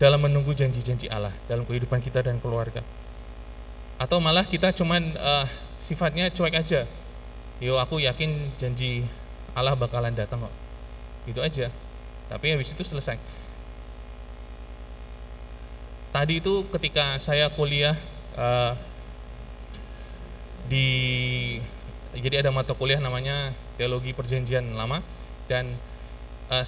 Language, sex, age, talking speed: Indonesian, male, 20-39, 110 wpm